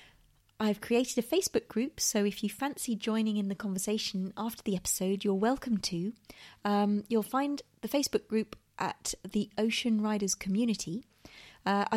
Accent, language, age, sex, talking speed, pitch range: British, English, 30-49, female, 155 wpm, 180-225 Hz